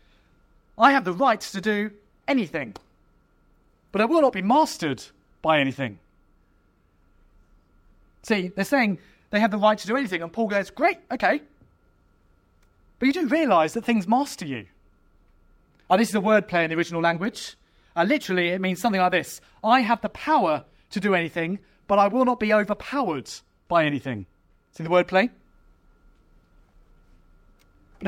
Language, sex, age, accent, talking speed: English, male, 30-49, British, 155 wpm